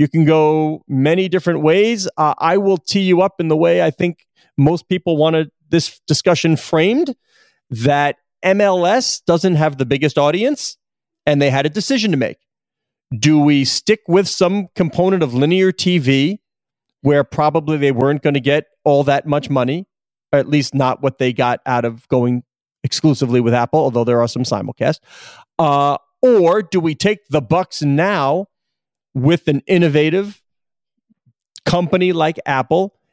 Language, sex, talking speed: English, male, 160 wpm